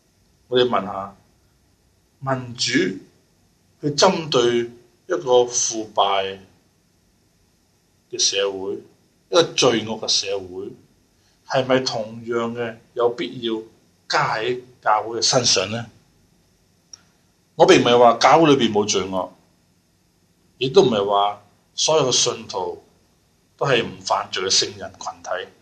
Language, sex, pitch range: Chinese, male, 95-145 Hz